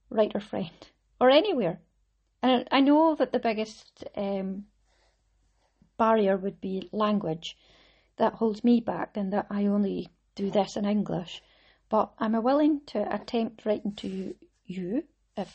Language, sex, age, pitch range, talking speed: English, female, 30-49, 185-235 Hz, 145 wpm